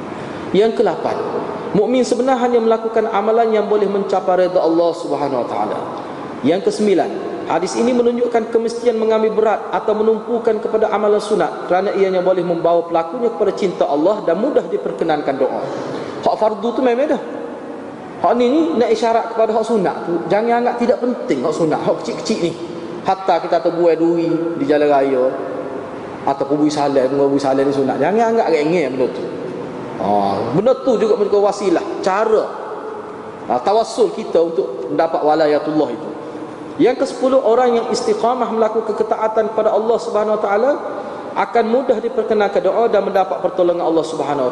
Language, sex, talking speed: Malay, male, 150 wpm